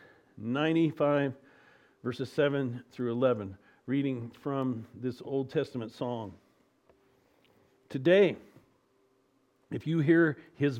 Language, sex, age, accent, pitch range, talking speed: English, male, 50-69, American, 130-160 Hz, 90 wpm